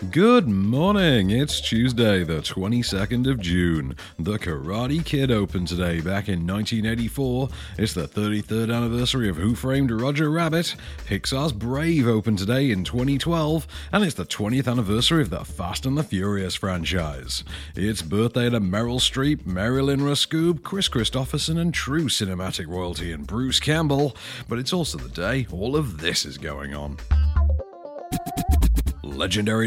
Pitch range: 95-140 Hz